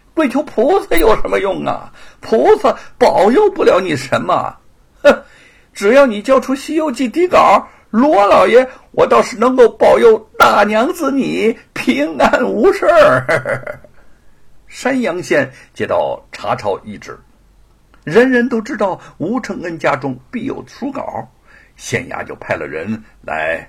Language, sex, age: Chinese, male, 60-79